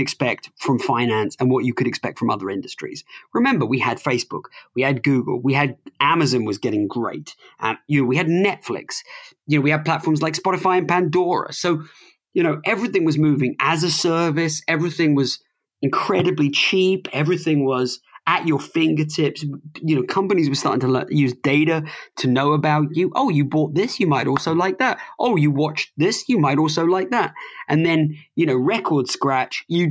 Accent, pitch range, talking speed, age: British, 135-170 Hz, 190 wpm, 20-39